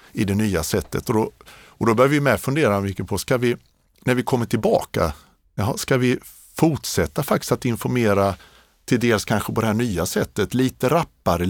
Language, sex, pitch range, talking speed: Swedish, male, 100-120 Hz, 185 wpm